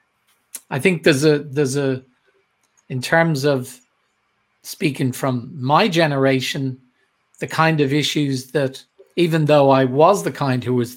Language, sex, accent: English, male, Irish